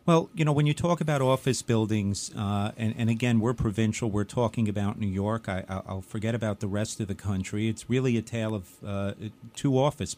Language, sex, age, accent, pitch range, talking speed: English, male, 40-59, American, 100-125 Hz, 210 wpm